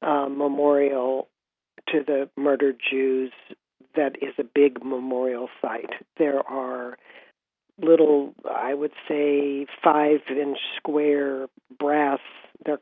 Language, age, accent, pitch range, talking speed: English, 50-69, American, 130-145 Hz, 105 wpm